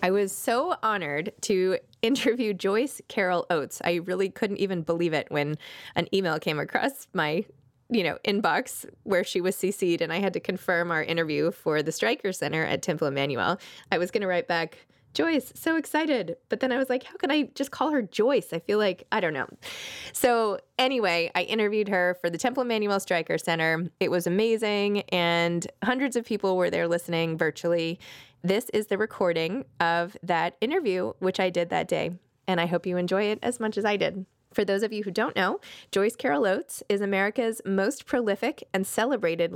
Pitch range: 170-220 Hz